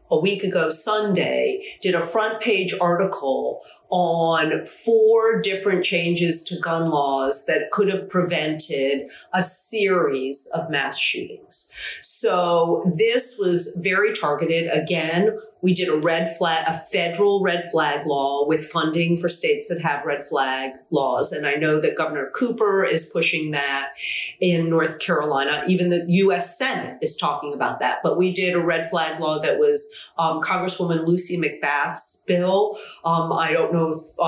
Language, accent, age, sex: English, American, 40-59, female